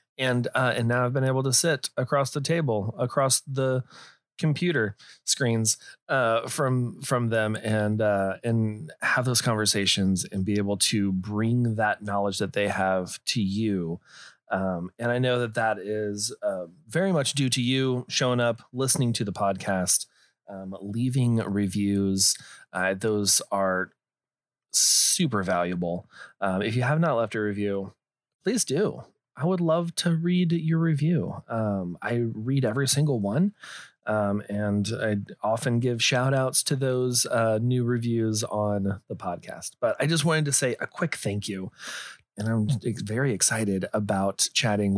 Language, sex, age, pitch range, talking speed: English, male, 30-49, 100-130 Hz, 160 wpm